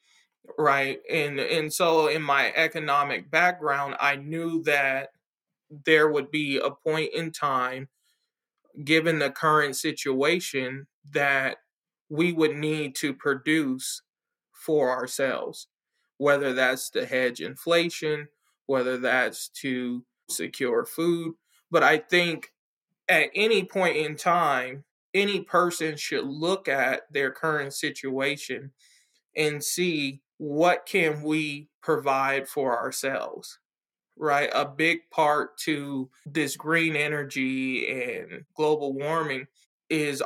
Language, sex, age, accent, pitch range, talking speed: English, male, 20-39, American, 135-160 Hz, 115 wpm